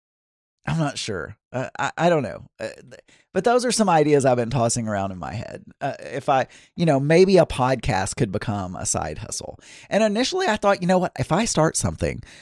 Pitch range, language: 115-155 Hz, English